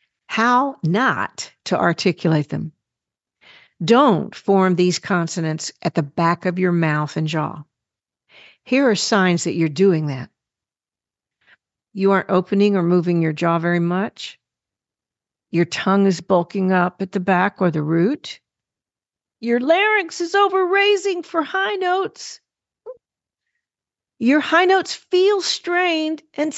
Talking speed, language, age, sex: 130 wpm, English, 50-69, female